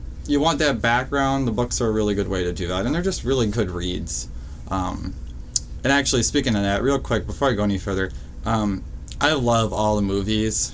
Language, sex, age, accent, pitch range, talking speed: English, male, 20-39, American, 95-120 Hz, 220 wpm